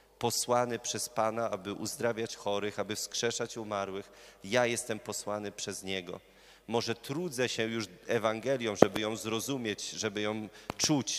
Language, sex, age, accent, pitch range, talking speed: Polish, male, 30-49, native, 105-125 Hz, 135 wpm